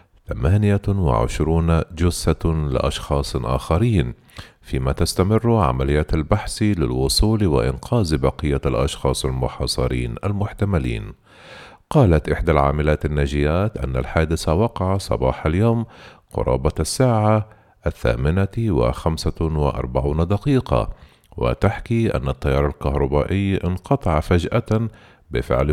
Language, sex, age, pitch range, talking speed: Arabic, male, 50-69, 70-105 Hz, 85 wpm